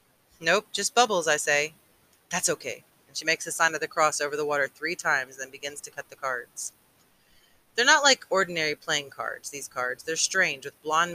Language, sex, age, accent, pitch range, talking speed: English, female, 30-49, American, 140-170 Hz, 205 wpm